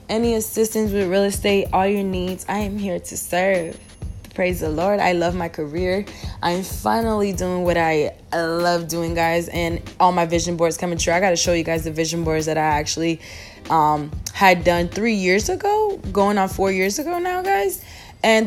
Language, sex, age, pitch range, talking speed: English, female, 20-39, 175-220 Hz, 200 wpm